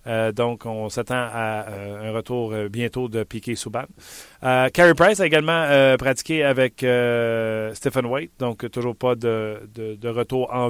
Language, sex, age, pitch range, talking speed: French, male, 30-49, 110-135 Hz, 175 wpm